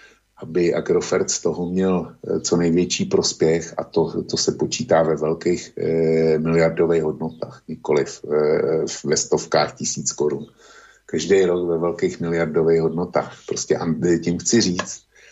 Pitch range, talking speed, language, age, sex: 80-90 Hz, 140 wpm, Slovak, 50-69, male